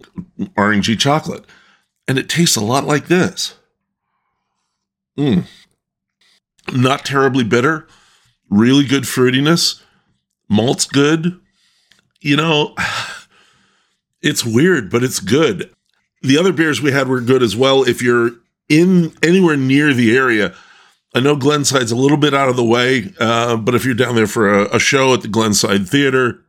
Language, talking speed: English, 145 wpm